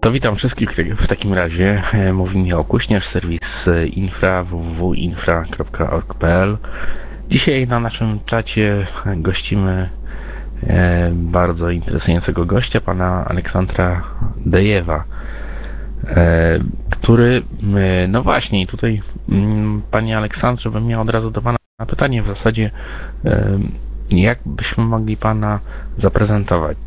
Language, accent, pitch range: Polish, native, 90-110 Hz